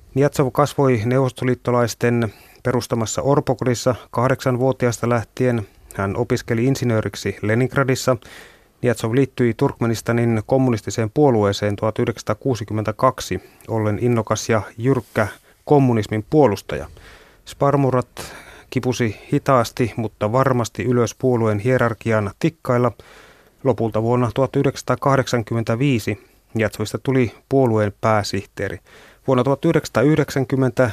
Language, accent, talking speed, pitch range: Finnish, native, 80 wpm, 110-130 Hz